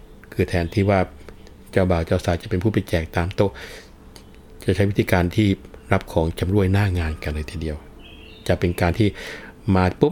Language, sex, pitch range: Thai, male, 85-105 Hz